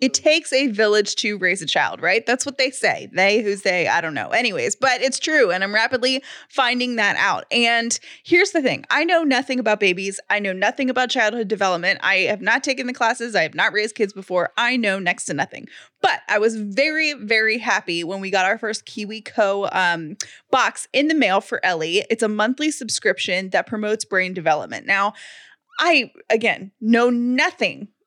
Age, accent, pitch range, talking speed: 20-39, American, 195-260 Hz, 200 wpm